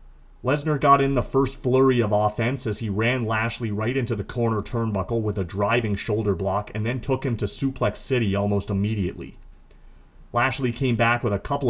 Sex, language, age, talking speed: male, English, 40-59, 190 wpm